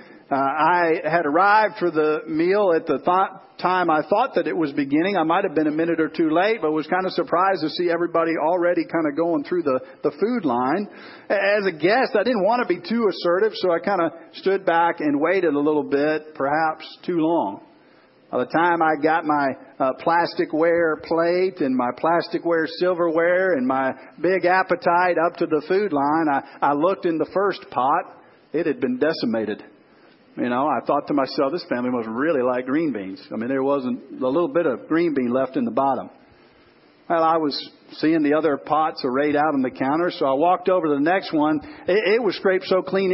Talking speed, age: 215 wpm, 50-69